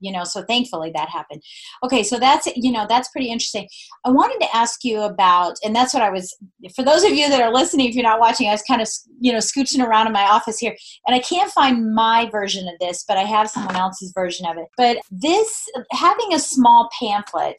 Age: 30-49